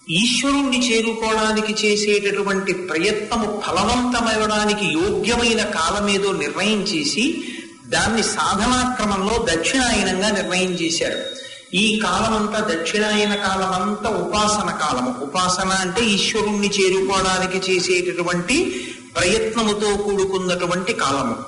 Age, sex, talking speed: 50-69, male, 125 wpm